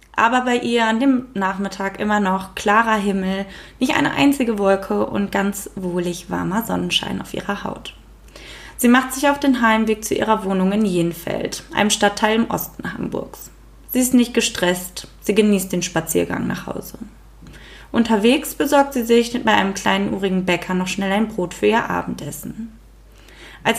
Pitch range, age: 180-225 Hz, 20-39